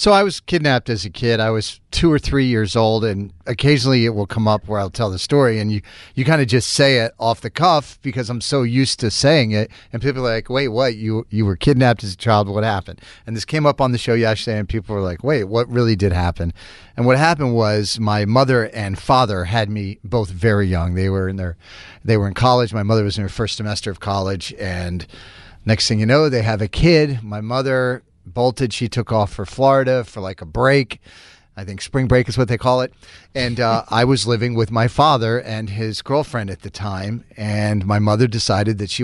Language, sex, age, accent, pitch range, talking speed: English, male, 40-59, American, 100-125 Hz, 240 wpm